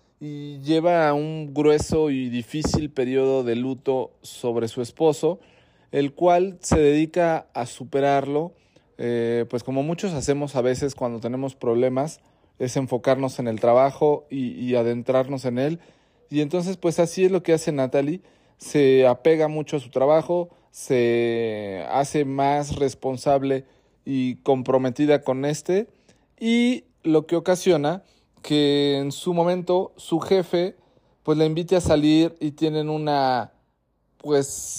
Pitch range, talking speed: 130-160 Hz, 140 wpm